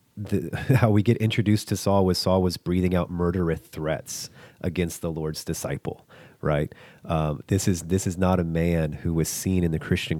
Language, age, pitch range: English, 30-49, 85-105 Hz